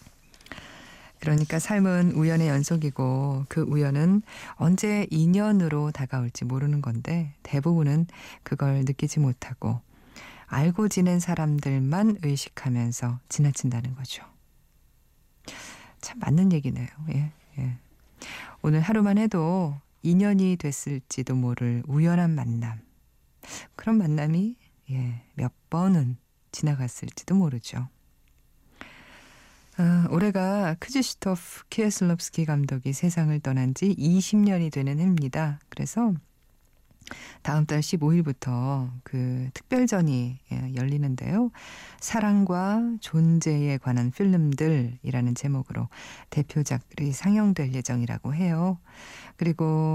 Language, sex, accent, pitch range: Korean, female, native, 130-170 Hz